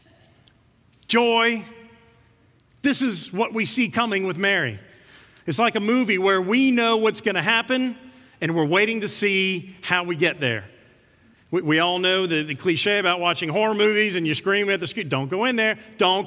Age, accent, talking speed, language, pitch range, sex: 40-59, American, 190 wpm, English, 130-215 Hz, male